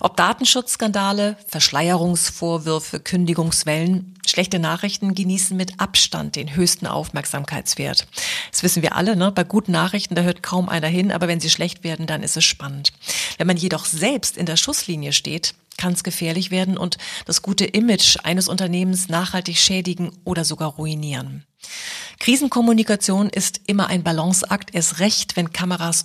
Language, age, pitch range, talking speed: German, 40-59, 165-195 Hz, 150 wpm